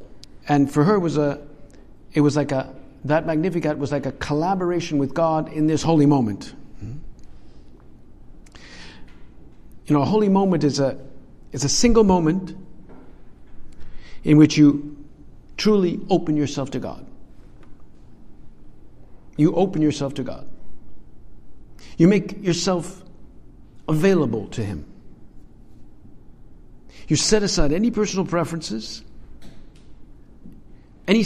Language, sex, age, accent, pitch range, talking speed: English, male, 60-79, American, 145-190 Hz, 115 wpm